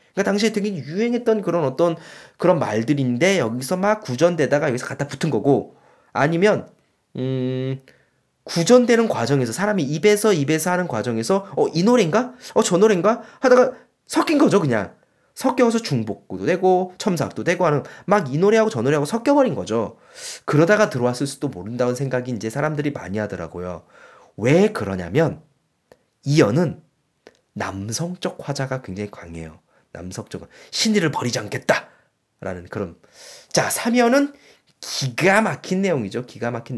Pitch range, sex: 130-215 Hz, male